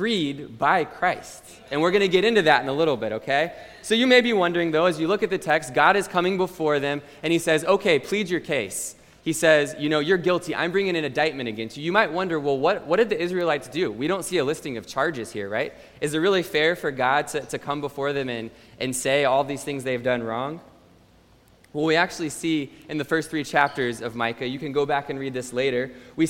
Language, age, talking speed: English, 20-39, 250 wpm